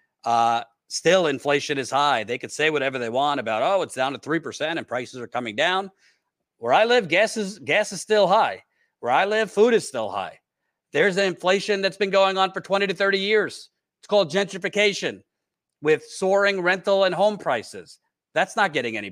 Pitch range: 140-190 Hz